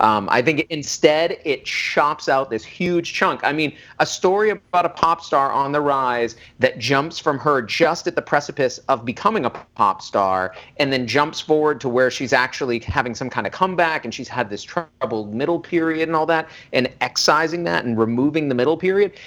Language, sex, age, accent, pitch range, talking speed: English, male, 40-59, American, 120-160 Hz, 200 wpm